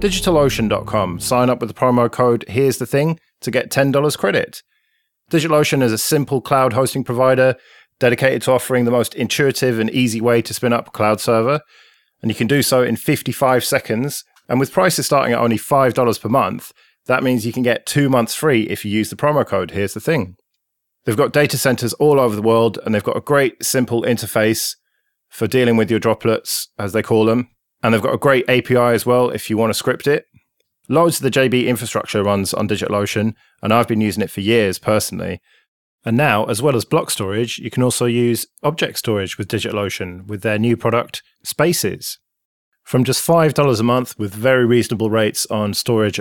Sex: male